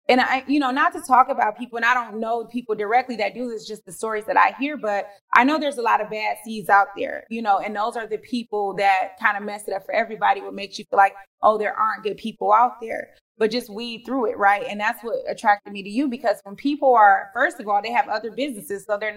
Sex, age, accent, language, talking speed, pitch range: female, 30-49, American, English, 280 wpm, 205-255 Hz